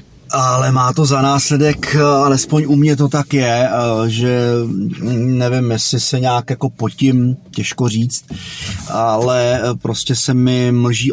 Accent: native